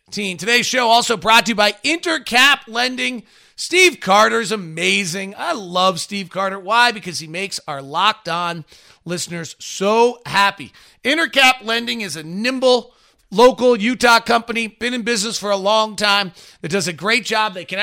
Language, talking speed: English, 165 wpm